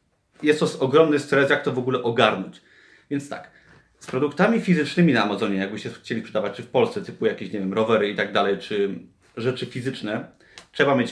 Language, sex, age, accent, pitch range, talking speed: Polish, male, 30-49, native, 115-150 Hz, 190 wpm